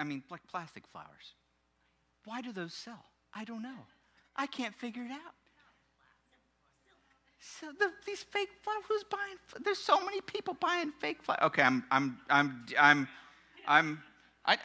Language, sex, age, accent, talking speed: English, male, 50-69, American, 155 wpm